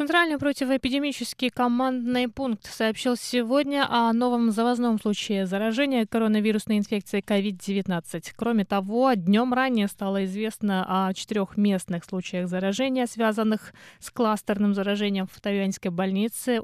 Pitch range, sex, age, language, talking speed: 195-240 Hz, female, 20-39, Russian, 115 wpm